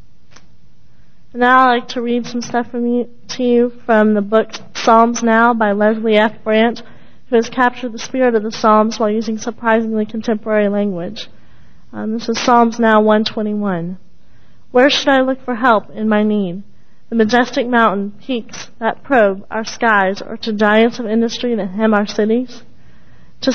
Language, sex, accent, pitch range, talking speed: English, female, American, 215-245 Hz, 165 wpm